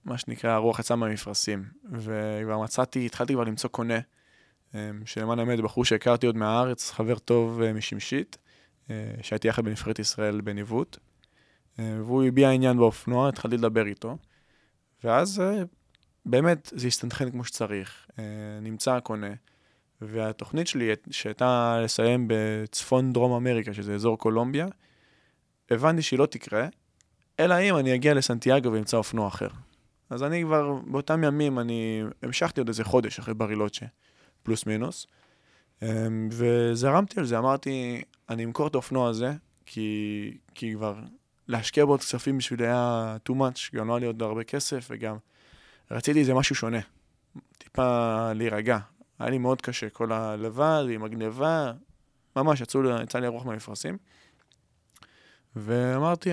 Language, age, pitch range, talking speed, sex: Hebrew, 20-39, 110-130 Hz, 130 wpm, male